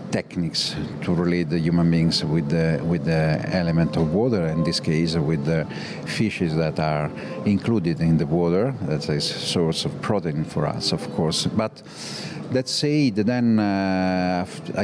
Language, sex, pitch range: English, male, 85-105 Hz